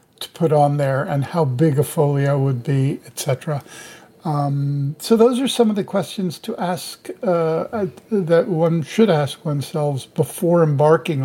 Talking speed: 160 wpm